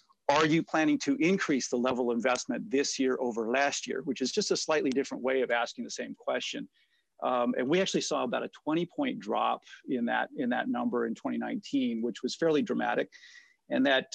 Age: 50-69